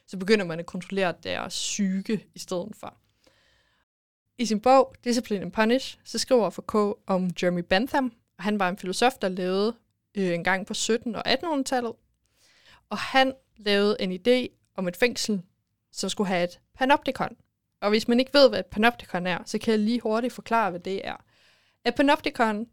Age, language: 20-39, Danish